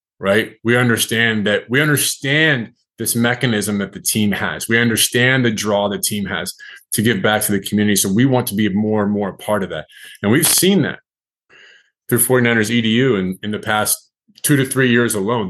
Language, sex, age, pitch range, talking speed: English, male, 30-49, 105-130 Hz, 205 wpm